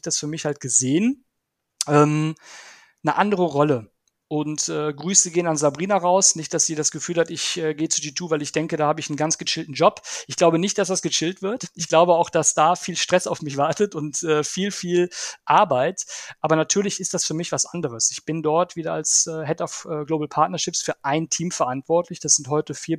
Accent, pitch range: German, 150-175 Hz